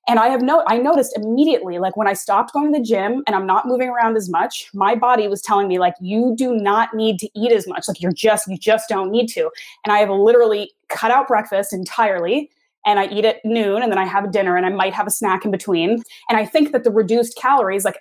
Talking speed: 260 wpm